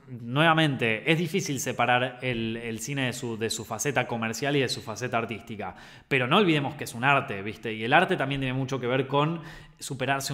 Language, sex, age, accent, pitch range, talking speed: Spanish, male, 20-39, Argentinian, 125-180 Hz, 210 wpm